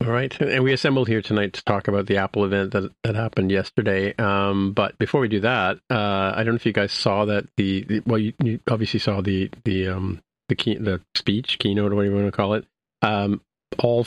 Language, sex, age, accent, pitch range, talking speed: English, male, 40-59, American, 100-115 Hz, 240 wpm